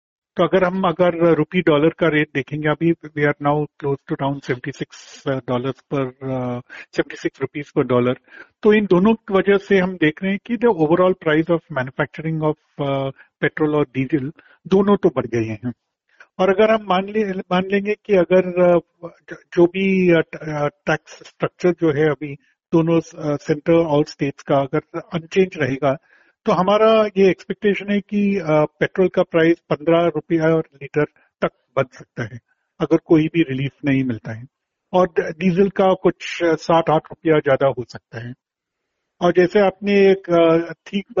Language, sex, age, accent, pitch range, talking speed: Hindi, male, 50-69, native, 145-180 Hz, 170 wpm